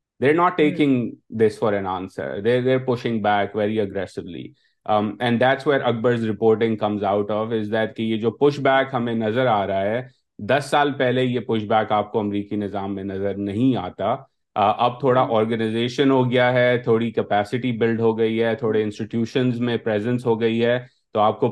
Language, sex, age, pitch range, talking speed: Urdu, male, 30-49, 105-125 Hz, 185 wpm